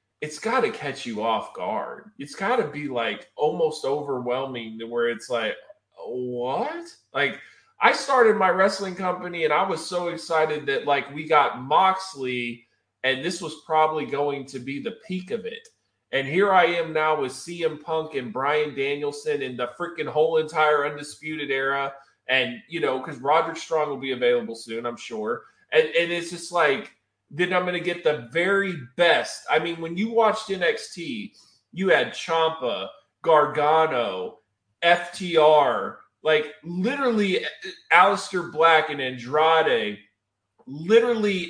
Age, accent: 20-39, American